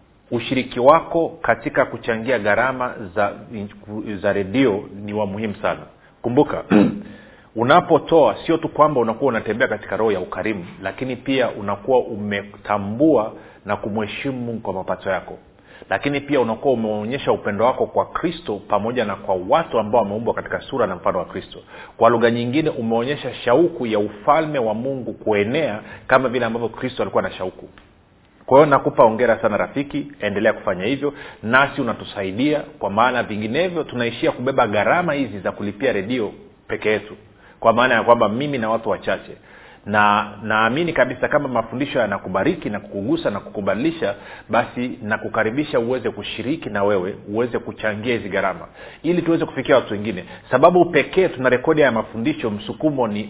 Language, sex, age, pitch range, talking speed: Swahili, male, 40-59, 105-135 Hz, 150 wpm